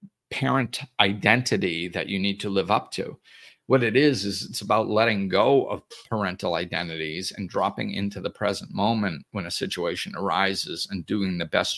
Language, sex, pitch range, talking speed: English, male, 95-120 Hz, 175 wpm